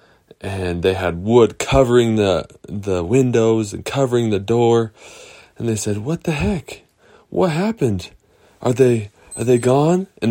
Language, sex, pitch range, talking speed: English, male, 90-115 Hz, 150 wpm